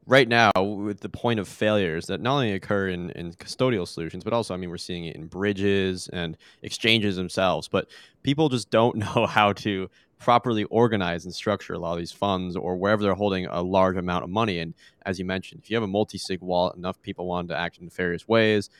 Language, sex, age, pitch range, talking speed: English, male, 20-39, 90-105 Hz, 225 wpm